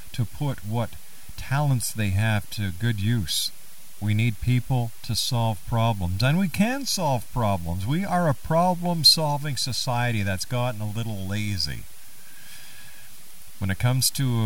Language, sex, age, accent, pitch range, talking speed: English, male, 50-69, American, 105-145 Hz, 140 wpm